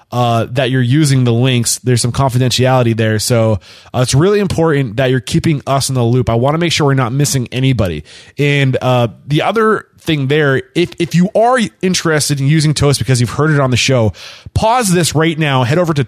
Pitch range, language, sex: 125-160 Hz, English, male